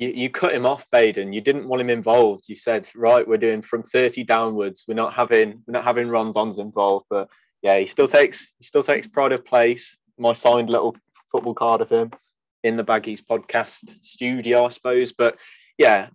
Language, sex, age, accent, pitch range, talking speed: English, male, 20-39, British, 110-140 Hz, 200 wpm